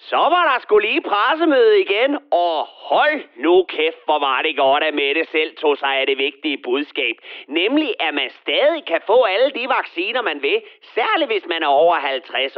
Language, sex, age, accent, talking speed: Danish, male, 40-59, native, 195 wpm